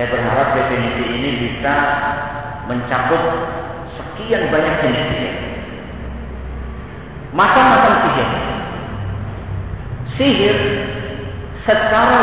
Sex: male